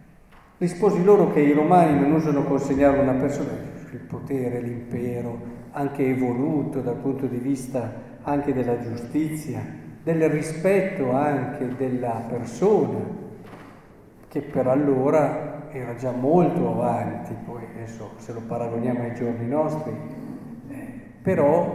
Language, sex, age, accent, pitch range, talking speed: Italian, male, 50-69, native, 130-165 Hz, 120 wpm